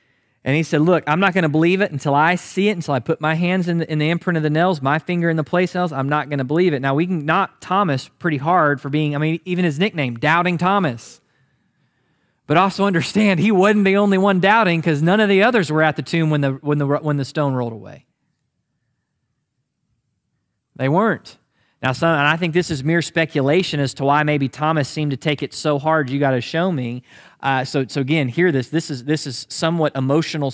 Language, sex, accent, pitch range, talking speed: English, male, American, 135-165 Hz, 230 wpm